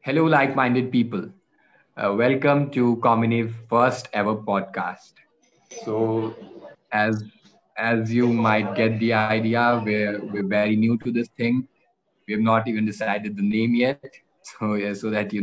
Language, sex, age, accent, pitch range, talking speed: English, male, 20-39, Indian, 100-115 Hz, 145 wpm